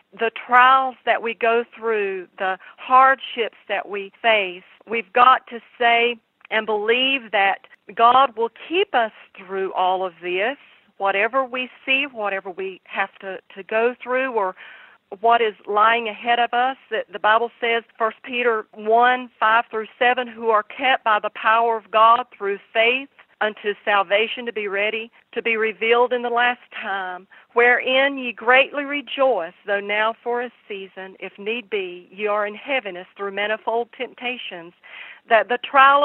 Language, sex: English, female